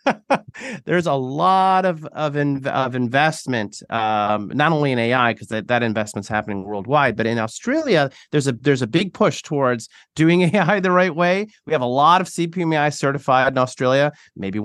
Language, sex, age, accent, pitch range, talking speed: English, male, 30-49, American, 115-155 Hz, 180 wpm